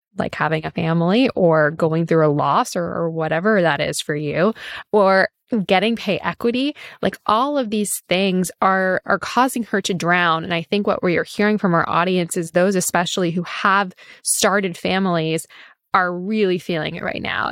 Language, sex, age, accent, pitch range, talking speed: English, female, 10-29, American, 180-230 Hz, 180 wpm